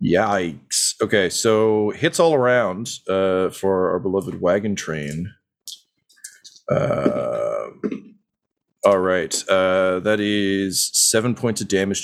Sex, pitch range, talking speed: male, 90-125 Hz, 110 wpm